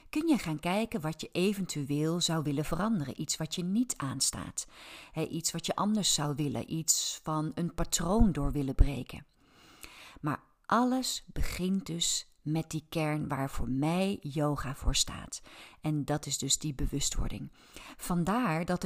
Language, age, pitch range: Dutch, 40-59, 150-195 Hz